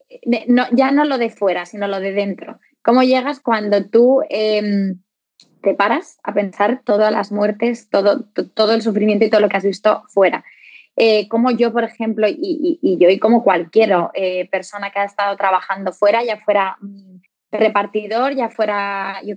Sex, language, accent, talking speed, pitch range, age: female, Spanish, Spanish, 180 wpm, 195-225 Hz, 20-39